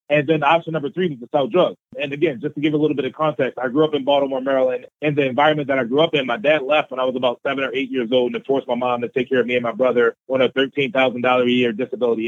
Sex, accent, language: male, American, English